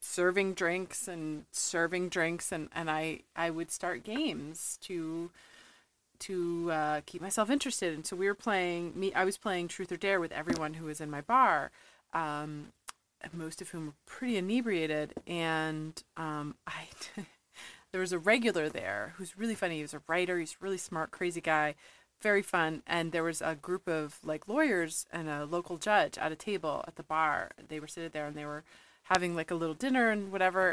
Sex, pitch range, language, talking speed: female, 165-210 Hz, English, 195 wpm